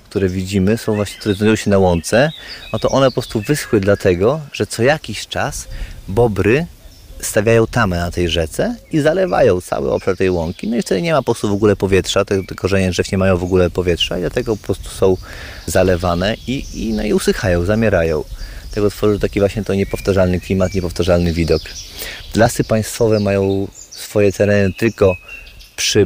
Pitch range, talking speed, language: 95-120 Hz, 175 wpm, Polish